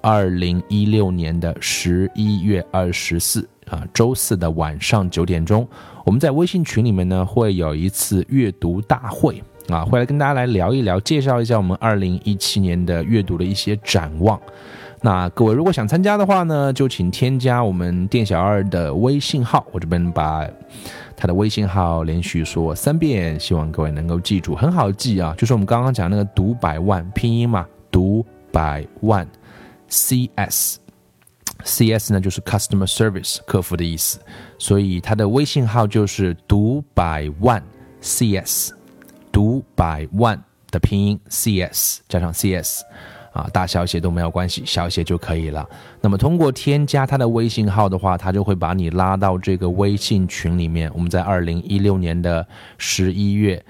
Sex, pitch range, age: male, 90-115 Hz, 20-39